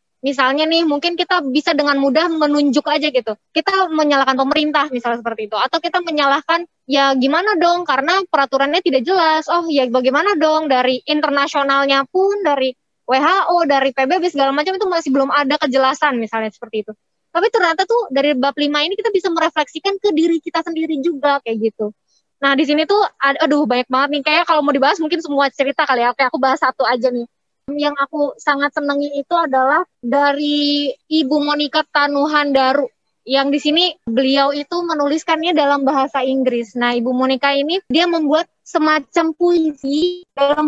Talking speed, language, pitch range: 170 wpm, Indonesian, 275-330 Hz